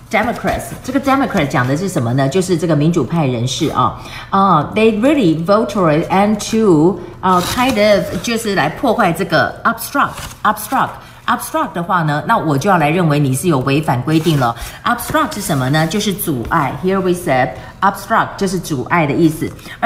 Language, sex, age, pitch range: Chinese, female, 40-59, 155-205 Hz